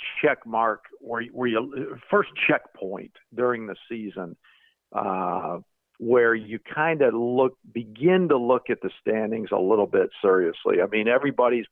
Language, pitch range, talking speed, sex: English, 100-130 Hz, 150 wpm, male